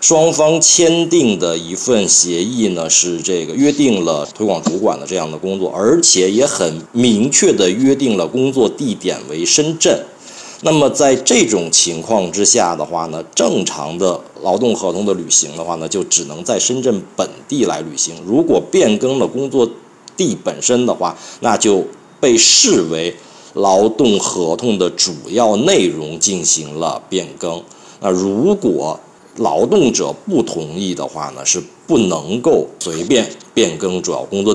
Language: Chinese